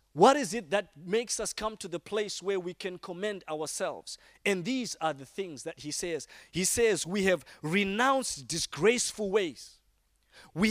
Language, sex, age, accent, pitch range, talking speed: English, male, 30-49, South African, 175-245 Hz, 175 wpm